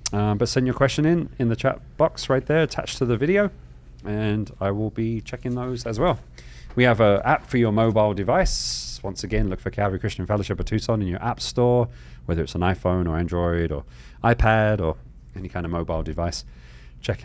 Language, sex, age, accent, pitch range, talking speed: English, male, 30-49, British, 85-115 Hz, 210 wpm